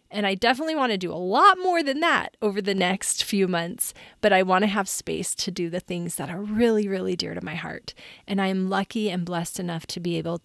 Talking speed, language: 245 wpm, English